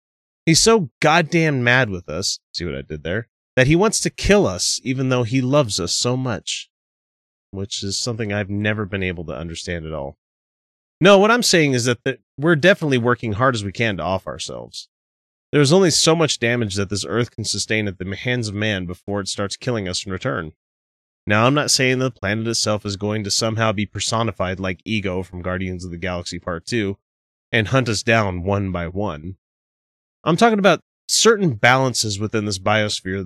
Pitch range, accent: 90-135 Hz, American